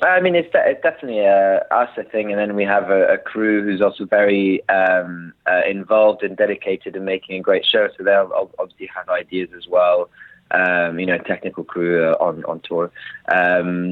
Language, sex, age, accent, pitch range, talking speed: English, male, 20-39, British, 90-110 Hz, 190 wpm